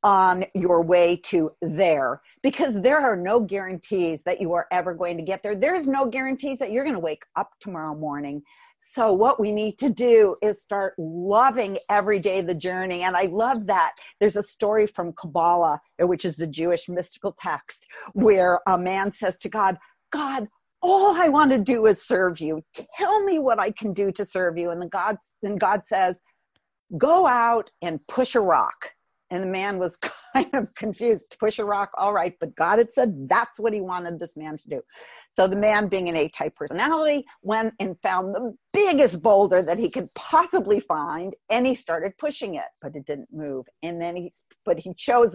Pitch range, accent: 180-240 Hz, American